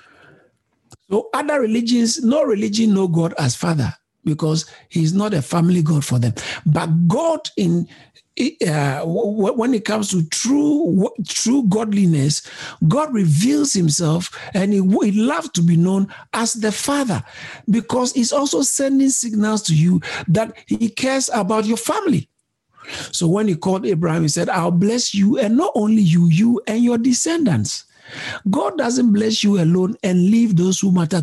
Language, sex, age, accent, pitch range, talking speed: English, male, 60-79, Nigerian, 150-220 Hz, 160 wpm